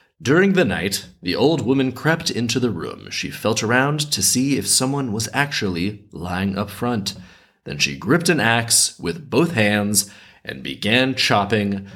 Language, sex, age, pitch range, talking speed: English, male, 30-49, 95-135 Hz, 165 wpm